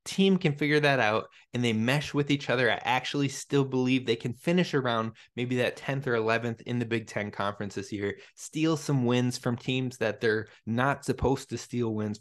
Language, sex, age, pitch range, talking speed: English, male, 20-39, 115-140 Hz, 210 wpm